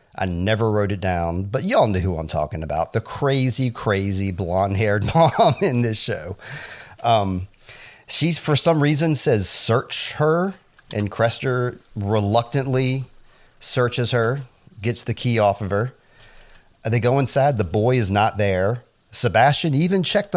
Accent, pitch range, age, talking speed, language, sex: American, 100-135 Hz, 40-59, 150 wpm, English, male